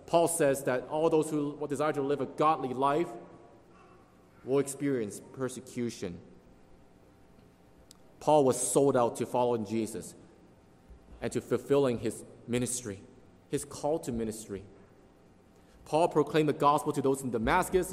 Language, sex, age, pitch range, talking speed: English, male, 30-49, 100-135 Hz, 130 wpm